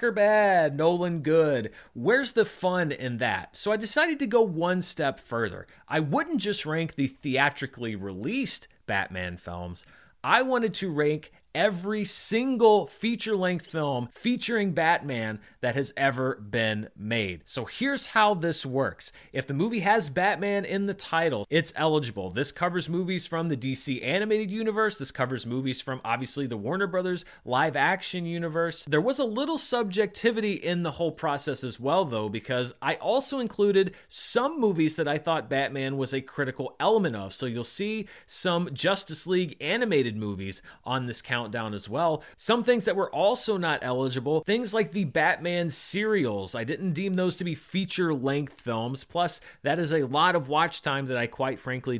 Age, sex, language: 30-49, male, English